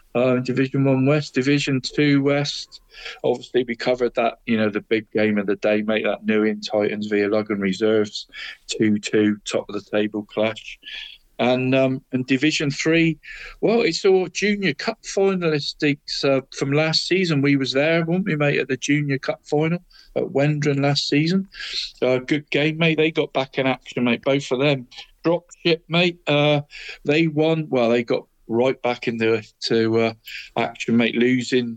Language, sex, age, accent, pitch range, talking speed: English, male, 50-69, British, 120-150 Hz, 175 wpm